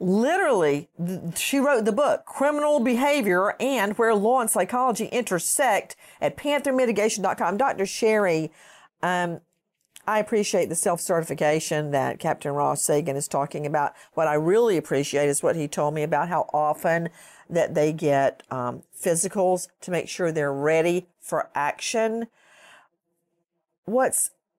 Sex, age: female, 50-69